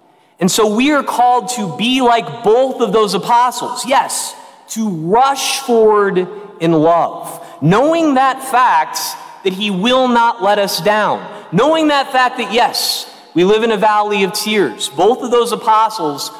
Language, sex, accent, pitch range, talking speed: English, male, American, 165-230 Hz, 160 wpm